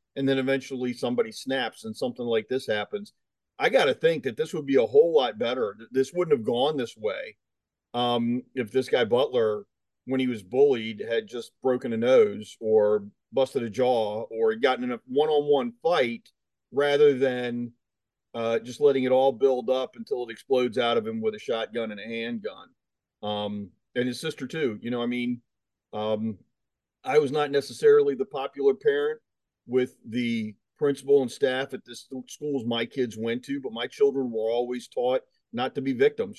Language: English